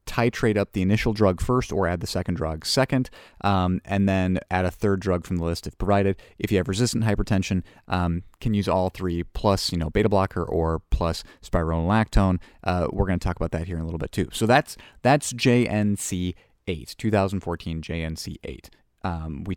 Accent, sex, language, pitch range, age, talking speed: American, male, English, 85-110 Hz, 30-49, 195 wpm